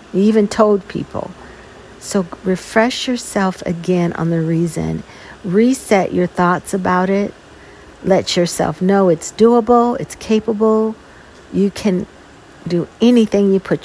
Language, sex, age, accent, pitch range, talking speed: English, female, 50-69, American, 170-215 Hz, 125 wpm